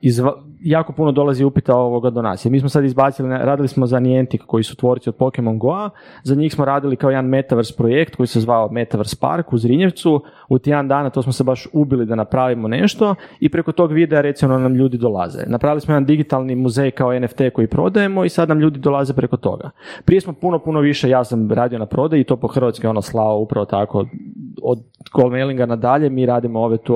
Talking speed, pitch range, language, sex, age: 220 wpm, 125-155 Hz, Croatian, male, 30-49